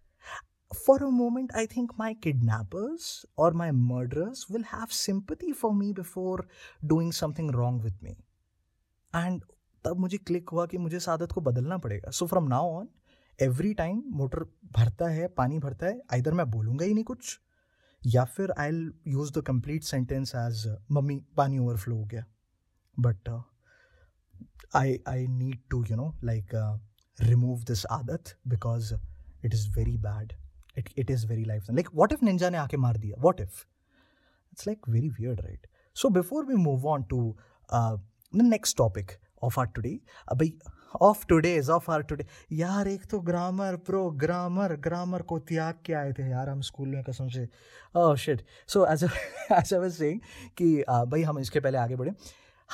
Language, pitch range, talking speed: Hindi, 115-175 Hz, 175 wpm